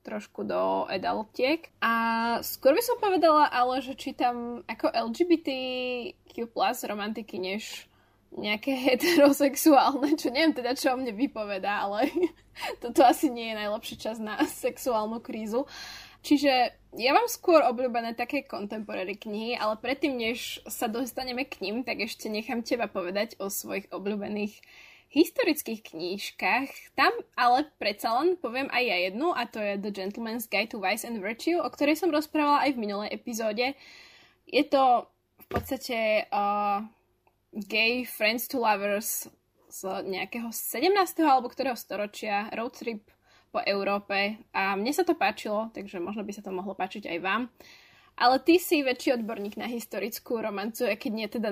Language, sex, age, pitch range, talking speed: Slovak, female, 10-29, 210-275 Hz, 150 wpm